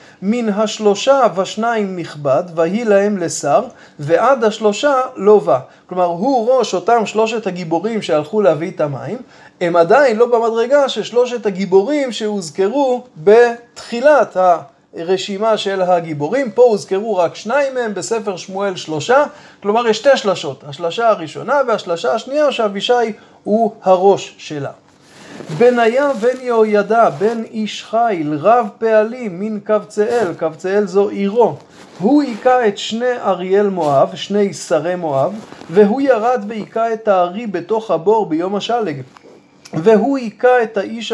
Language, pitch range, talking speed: Hebrew, 185-230 Hz, 125 wpm